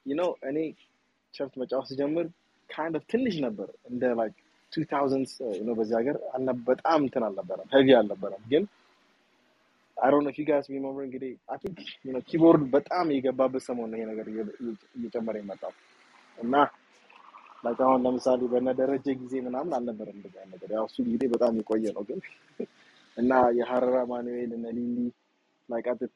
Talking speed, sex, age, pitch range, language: 90 wpm, male, 20-39, 115-145 Hz, English